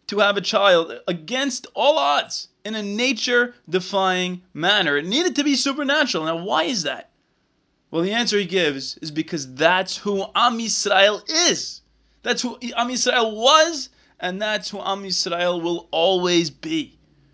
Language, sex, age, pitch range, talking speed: English, male, 20-39, 165-225 Hz, 155 wpm